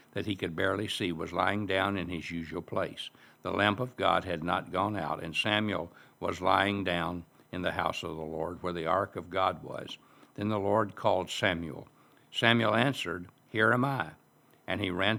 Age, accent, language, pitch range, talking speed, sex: 60-79, American, English, 85-105 Hz, 200 wpm, male